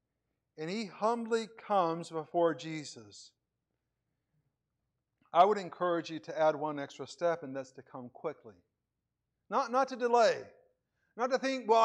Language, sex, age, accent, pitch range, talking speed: English, male, 50-69, American, 155-230 Hz, 140 wpm